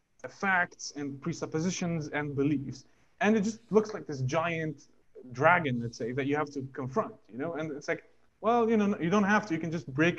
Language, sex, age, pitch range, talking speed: English, male, 20-39, 145-185 Hz, 210 wpm